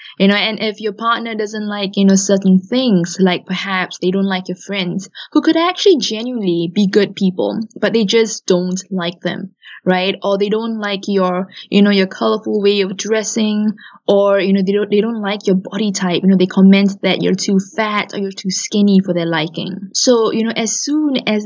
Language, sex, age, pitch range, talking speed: English, female, 10-29, 190-225 Hz, 215 wpm